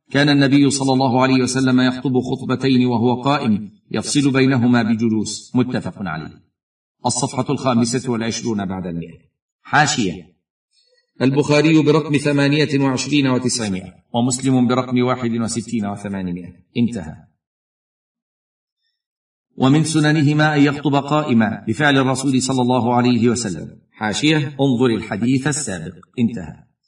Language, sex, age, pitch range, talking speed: Arabic, male, 50-69, 120-140 Hz, 105 wpm